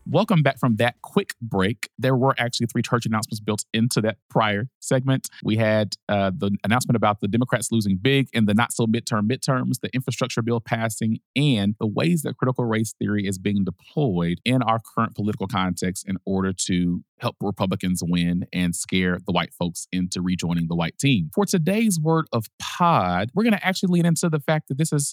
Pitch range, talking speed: 95-125 Hz, 195 wpm